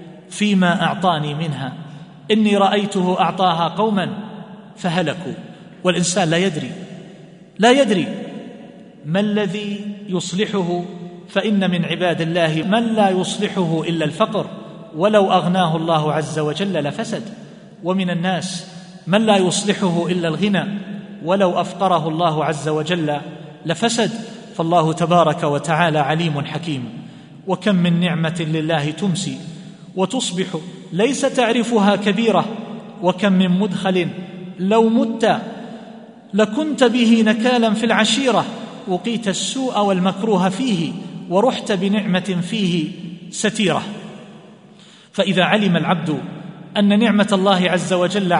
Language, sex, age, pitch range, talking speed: Arabic, male, 40-59, 175-210 Hz, 105 wpm